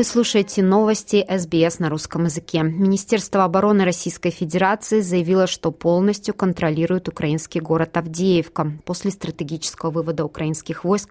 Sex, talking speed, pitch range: female, 120 wpm, 165-195 Hz